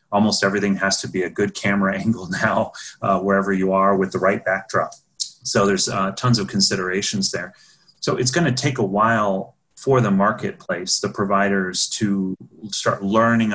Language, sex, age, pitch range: English, male, 30-49, 95-115 Hz